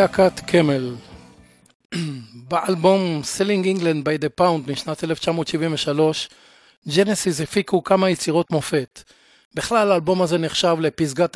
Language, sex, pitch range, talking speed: Hebrew, male, 150-190 Hz, 105 wpm